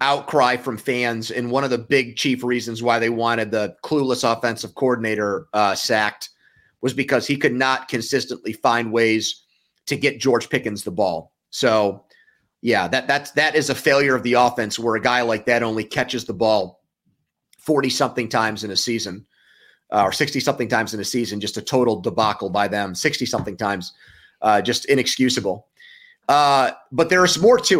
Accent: American